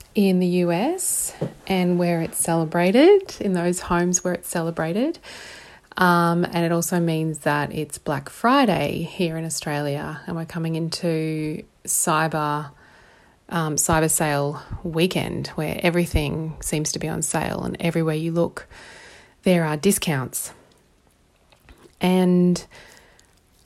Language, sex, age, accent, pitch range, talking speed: English, female, 20-39, Australian, 155-180 Hz, 125 wpm